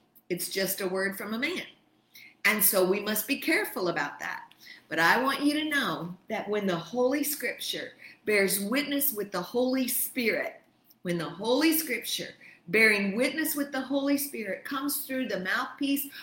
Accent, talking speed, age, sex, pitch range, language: American, 170 wpm, 50-69, female, 190-255 Hz, English